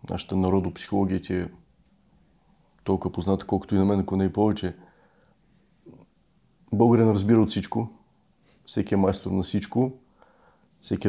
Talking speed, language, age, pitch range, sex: 125 wpm, Bulgarian, 30-49, 95-110 Hz, male